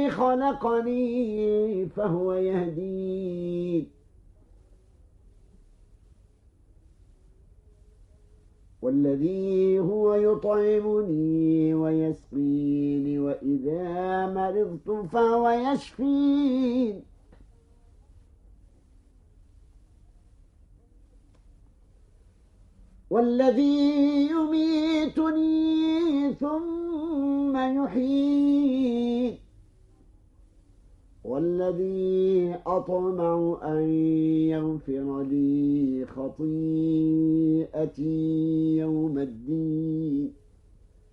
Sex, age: male, 50-69